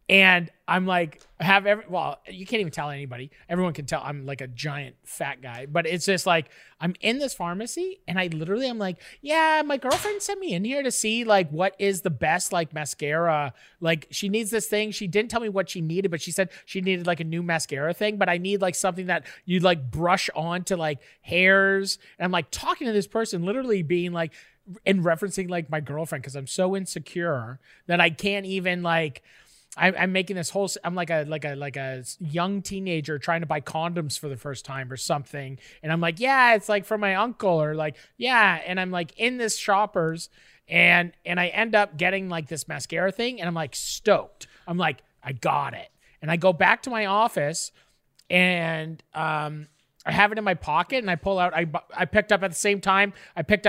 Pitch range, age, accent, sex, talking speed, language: 155-195 Hz, 30-49, American, male, 220 wpm, English